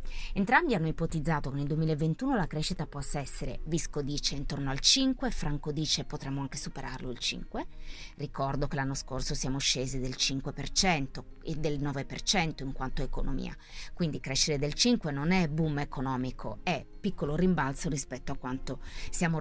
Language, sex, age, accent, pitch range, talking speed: Italian, female, 30-49, native, 140-175 Hz, 160 wpm